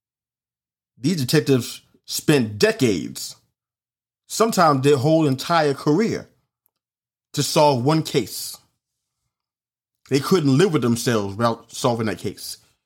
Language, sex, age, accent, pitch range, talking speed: English, male, 30-49, American, 120-150 Hz, 105 wpm